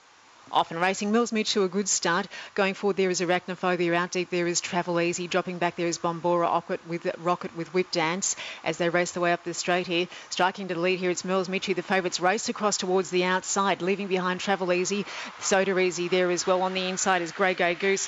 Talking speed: 230 wpm